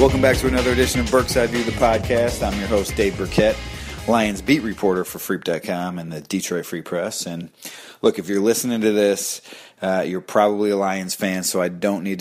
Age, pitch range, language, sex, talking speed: 30-49, 90-105 Hz, English, male, 205 wpm